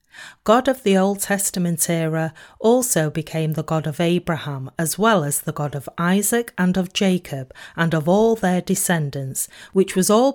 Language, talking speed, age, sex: English, 175 wpm, 40-59, female